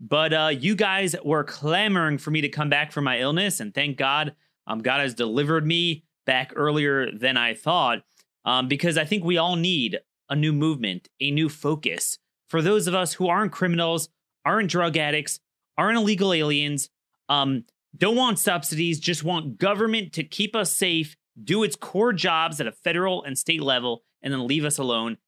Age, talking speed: 30-49, 190 wpm